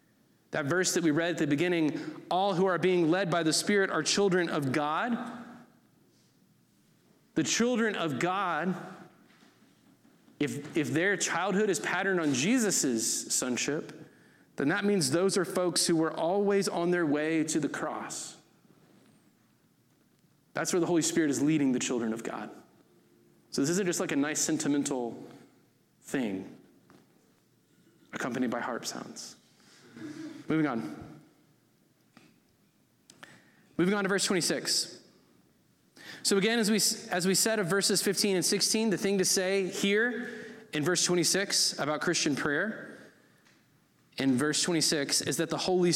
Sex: male